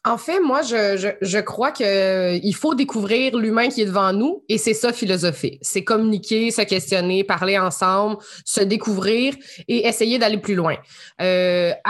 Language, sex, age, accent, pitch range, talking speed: French, female, 20-39, Canadian, 190-230 Hz, 175 wpm